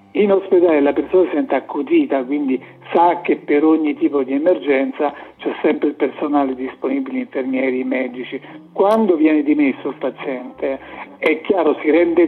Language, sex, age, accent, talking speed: Italian, male, 60-79, native, 160 wpm